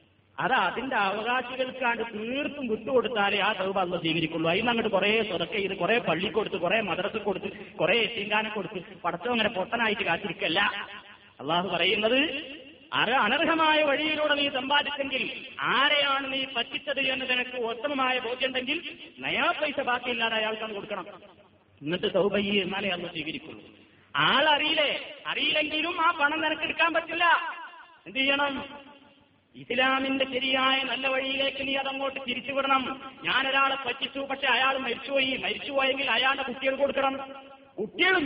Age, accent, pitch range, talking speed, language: 30-49, native, 230-275 Hz, 115 wpm, Malayalam